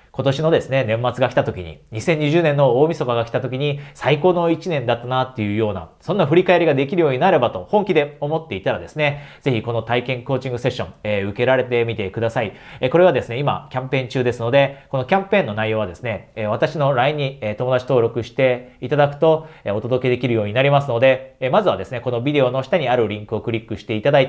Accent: native